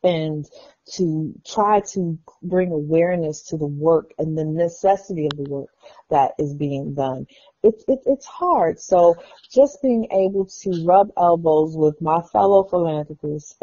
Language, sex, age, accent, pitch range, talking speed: English, female, 40-59, American, 150-185 Hz, 145 wpm